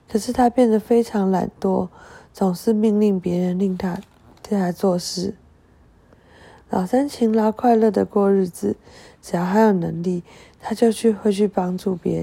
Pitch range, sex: 180-215 Hz, female